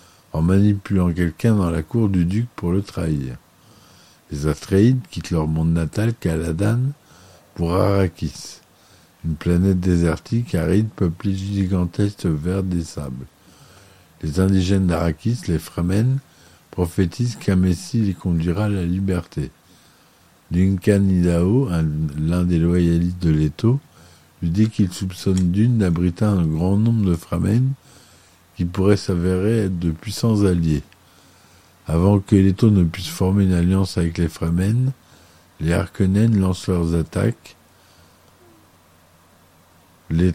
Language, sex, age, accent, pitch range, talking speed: French, male, 50-69, French, 85-100 Hz, 125 wpm